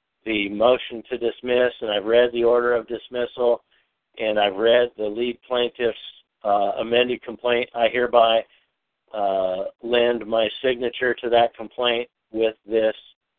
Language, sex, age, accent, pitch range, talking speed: English, male, 50-69, American, 115-130 Hz, 140 wpm